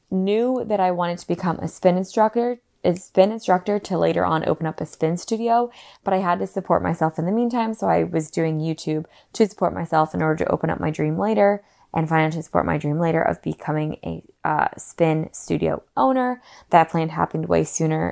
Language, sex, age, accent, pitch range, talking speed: English, female, 20-39, American, 155-185 Hz, 210 wpm